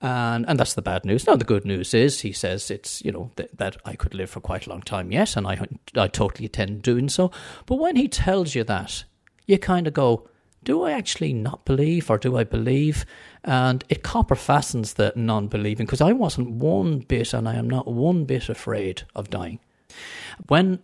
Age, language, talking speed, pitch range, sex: 40-59, English, 215 wpm, 110-145 Hz, male